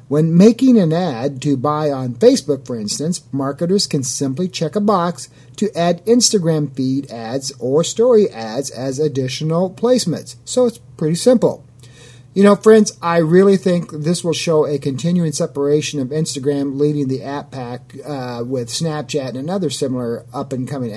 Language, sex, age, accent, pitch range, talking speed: English, male, 40-59, American, 135-170 Hz, 160 wpm